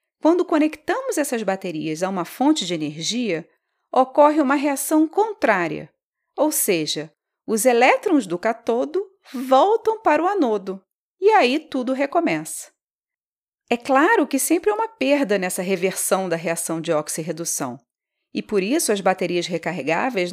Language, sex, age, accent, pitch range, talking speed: Portuguese, female, 40-59, Brazilian, 195-315 Hz, 135 wpm